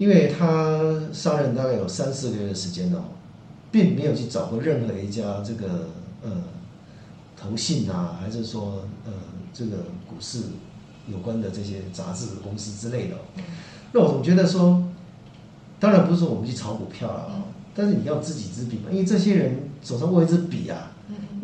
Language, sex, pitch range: Chinese, male, 115-185 Hz